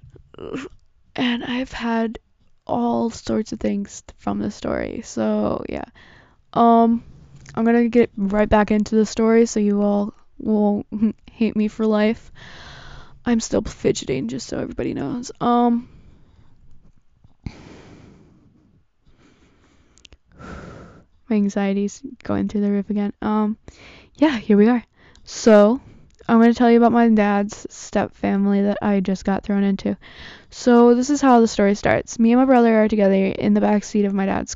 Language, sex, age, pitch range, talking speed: English, female, 10-29, 200-240 Hz, 150 wpm